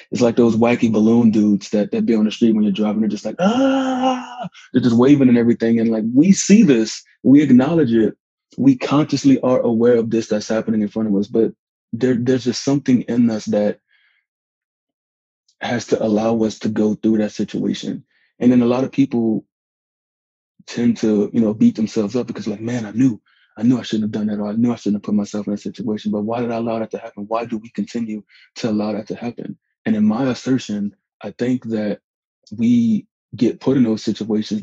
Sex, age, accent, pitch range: male, 20-39, American, 105-120 Hz